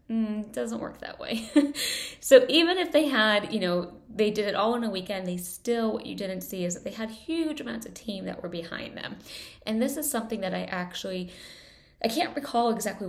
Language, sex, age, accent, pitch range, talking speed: English, female, 10-29, American, 185-260 Hz, 220 wpm